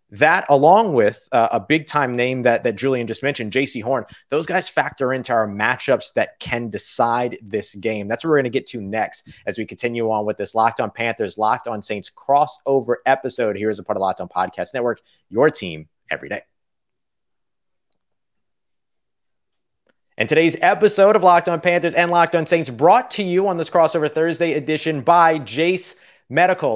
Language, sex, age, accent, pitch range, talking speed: English, male, 30-49, American, 125-170 Hz, 185 wpm